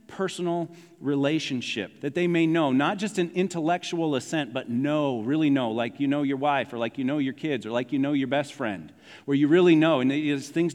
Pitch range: 135-170 Hz